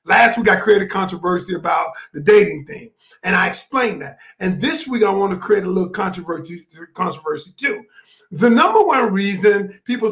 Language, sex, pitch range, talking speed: English, male, 195-245 Hz, 185 wpm